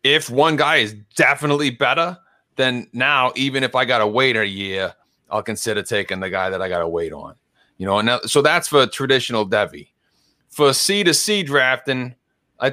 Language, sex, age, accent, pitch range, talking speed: English, male, 30-49, American, 110-140 Hz, 195 wpm